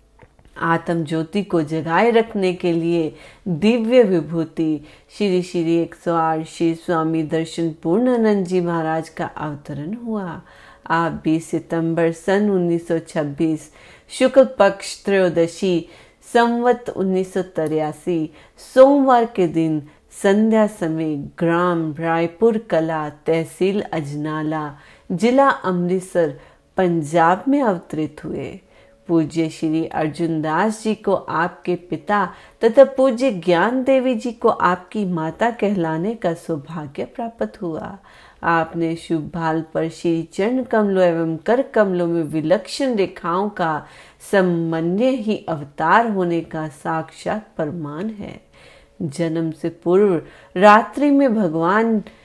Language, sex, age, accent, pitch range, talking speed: Hindi, female, 30-49, native, 160-210 Hz, 100 wpm